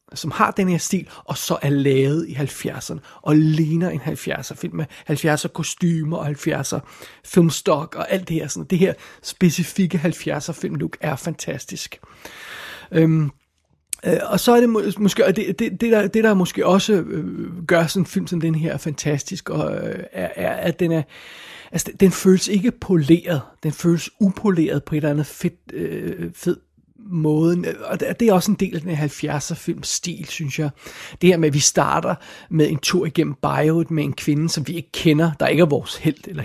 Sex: male